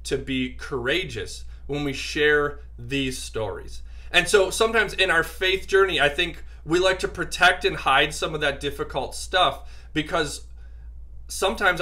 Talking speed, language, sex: 150 wpm, English, male